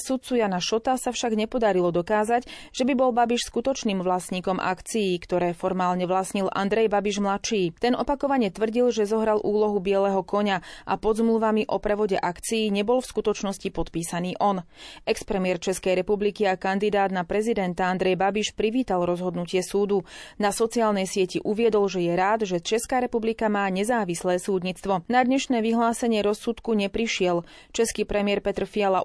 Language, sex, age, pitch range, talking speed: Slovak, female, 30-49, 185-225 Hz, 150 wpm